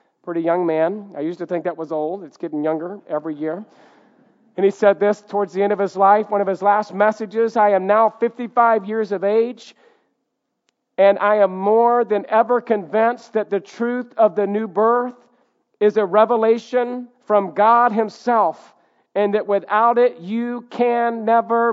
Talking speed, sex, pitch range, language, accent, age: 175 wpm, male, 170-210 Hz, English, American, 50-69